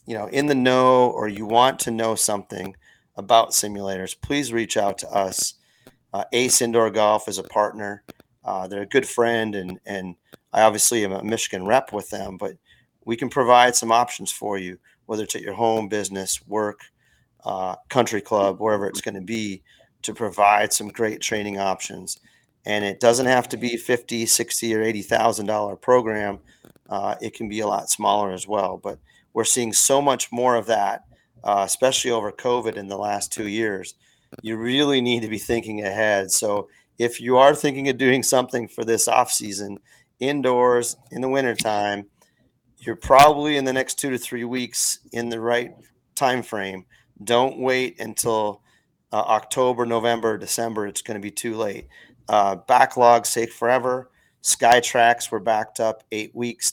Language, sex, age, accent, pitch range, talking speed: English, male, 40-59, American, 105-120 Hz, 180 wpm